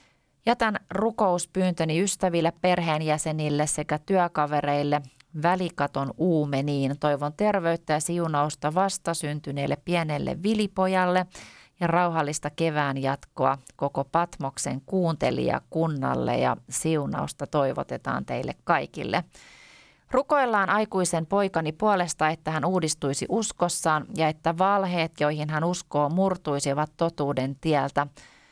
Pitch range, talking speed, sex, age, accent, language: 145-180 Hz, 95 wpm, female, 30-49, native, Finnish